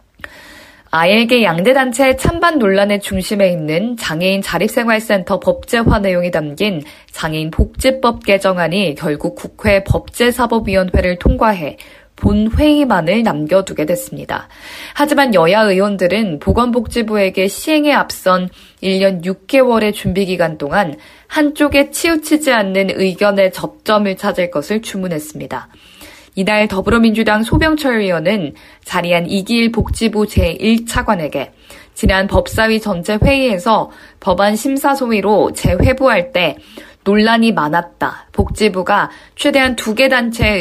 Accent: native